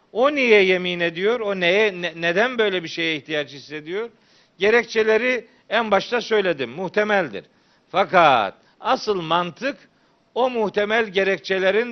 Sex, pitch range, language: male, 185-235 Hz, Turkish